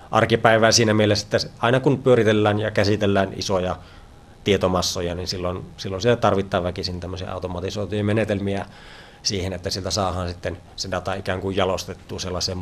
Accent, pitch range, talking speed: native, 90-105 Hz, 145 wpm